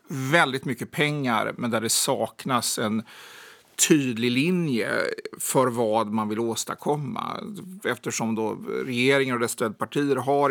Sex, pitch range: male, 115-145 Hz